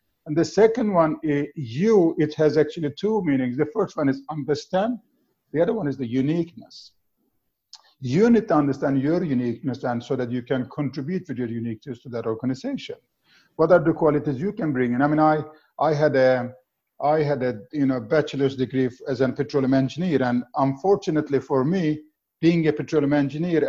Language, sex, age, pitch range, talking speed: English, male, 50-69, 130-170 Hz, 180 wpm